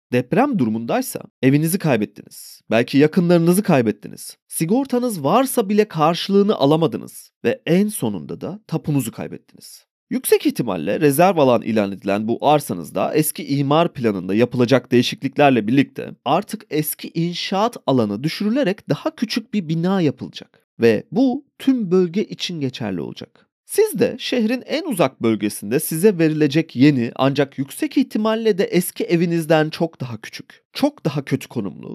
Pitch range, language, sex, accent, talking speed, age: 130-220 Hz, Turkish, male, native, 135 wpm, 30-49